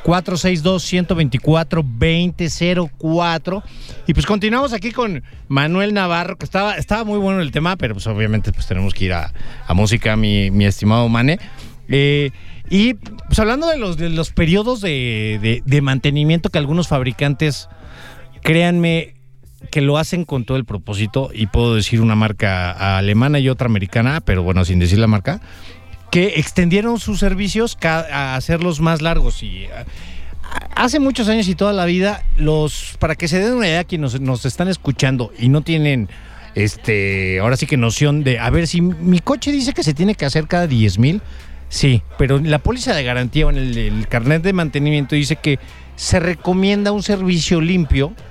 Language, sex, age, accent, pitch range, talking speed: English, male, 40-59, Mexican, 115-175 Hz, 175 wpm